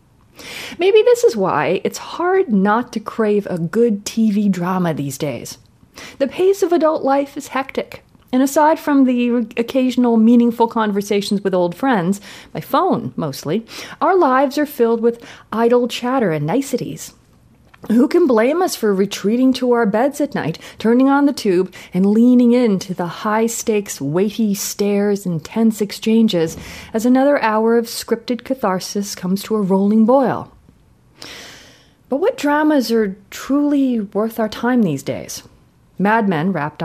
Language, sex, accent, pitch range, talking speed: English, female, American, 180-245 Hz, 155 wpm